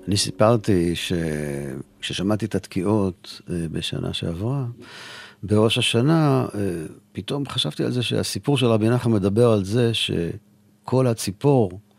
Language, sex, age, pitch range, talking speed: Hebrew, male, 50-69, 95-120 Hz, 110 wpm